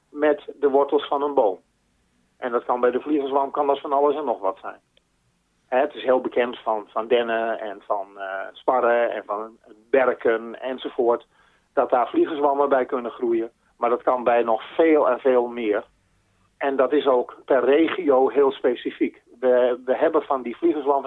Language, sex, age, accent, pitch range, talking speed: Dutch, male, 40-59, Dutch, 120-145 Hz, 175 wpm